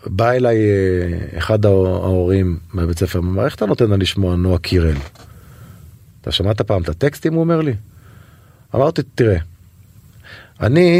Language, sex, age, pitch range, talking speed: Hebrew, male, 30-49, 95-130 Hz, 135 wpm